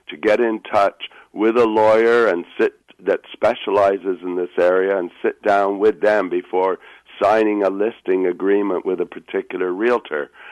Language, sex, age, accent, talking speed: English, male, 60-79, American, 160 wpm